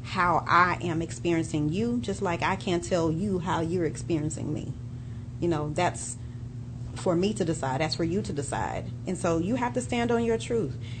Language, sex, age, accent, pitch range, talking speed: English, female, 30-49, American, 120-195 Hz, 195 wpm